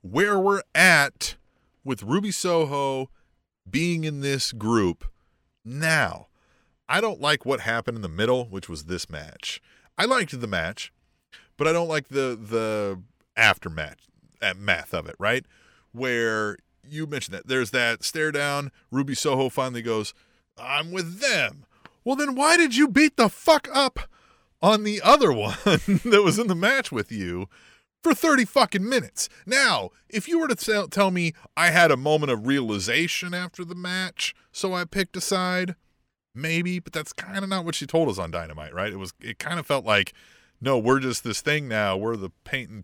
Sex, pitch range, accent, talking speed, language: male, 115-180 Hz, American, 180 wpm, English